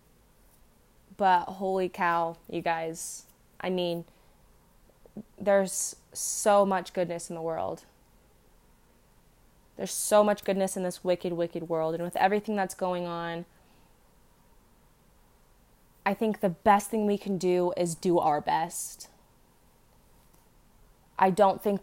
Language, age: English, 20-39